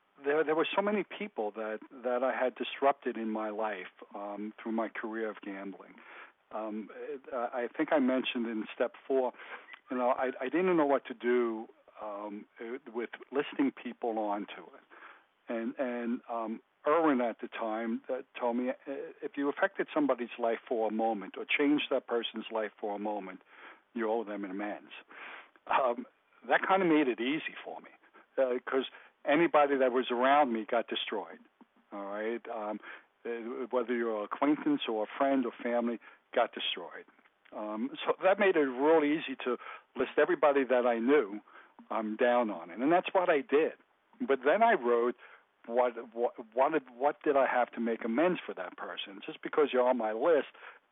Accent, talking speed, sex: American, 175 wpm, male